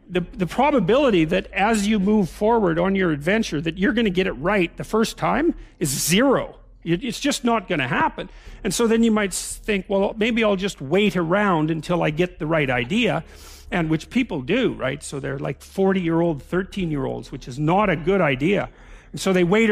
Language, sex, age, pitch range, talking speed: English, male, 50-69, 165-220 Hz, 200 wpm